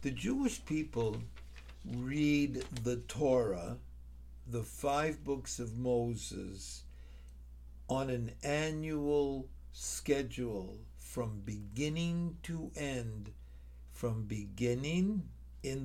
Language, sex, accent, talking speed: English, male, American, 85 wpm